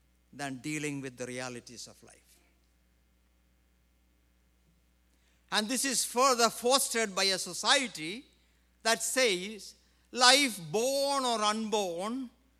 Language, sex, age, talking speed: English, male, 60-79, 100 wpm